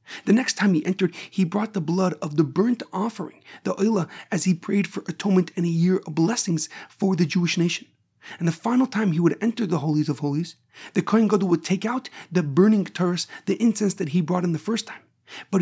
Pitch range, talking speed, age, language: 160-200 Hz, 225 wpm, 40-59, English